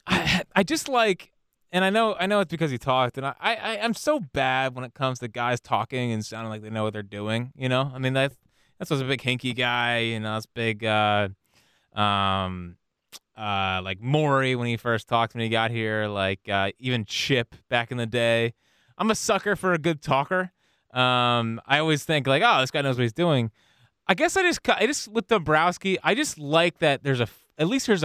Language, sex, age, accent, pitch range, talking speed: English, male, 20-39, American, 110-155 Hz, 225 wpm